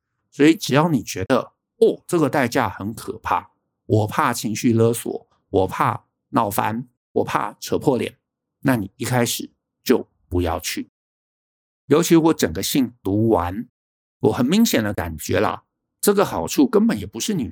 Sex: male